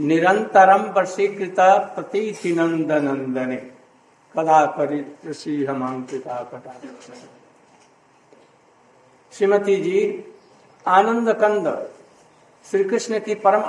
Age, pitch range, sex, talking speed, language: 60-79, 170-215 Hz, male, 60 wpm, Hindi